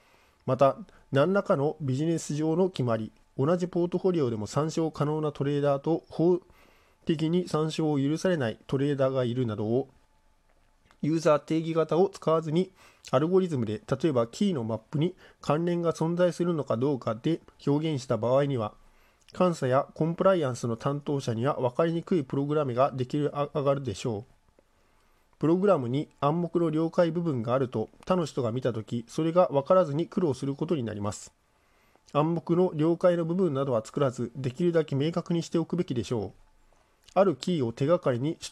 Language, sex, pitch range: Japanese, male, 125-170 Hz